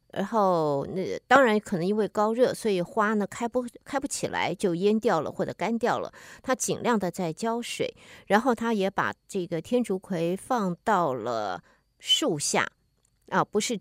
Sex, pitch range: female, 180-245 Hz